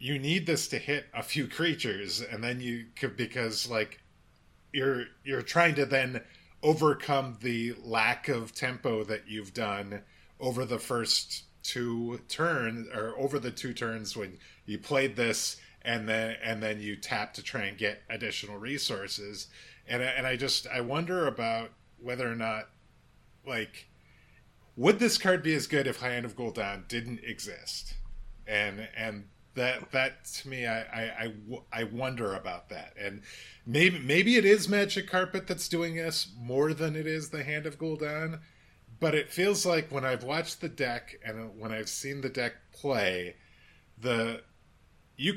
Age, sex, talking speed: 30-49, male, 165 wpm